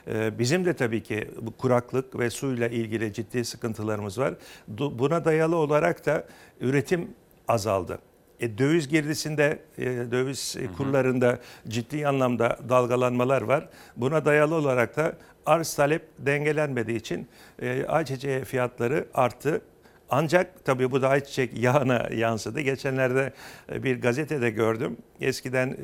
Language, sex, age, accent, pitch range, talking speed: Turkish, male, 60-79, native, 115-150 Hz, 115 wpm